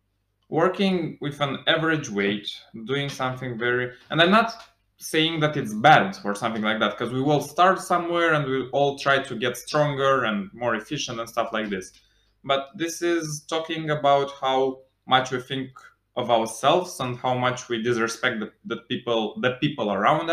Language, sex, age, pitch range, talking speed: English, male, 20-39, 110-155 Hz, 180 wpm